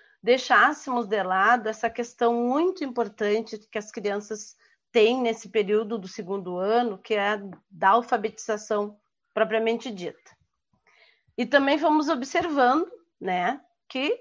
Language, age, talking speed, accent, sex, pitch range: Portuguese, 40-59, 120 wpm, Brazilian, female, 210-265 Hz